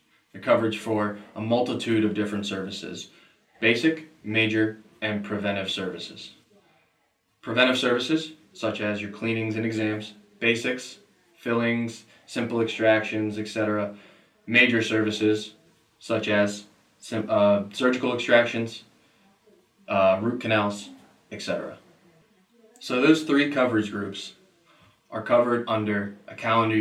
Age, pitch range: 20-39, 105-115 Hz